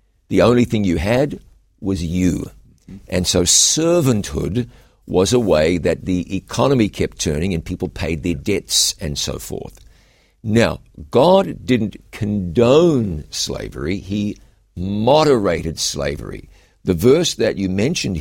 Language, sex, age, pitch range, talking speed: English, male, 60-79, 90-120 Hz, 130 wpm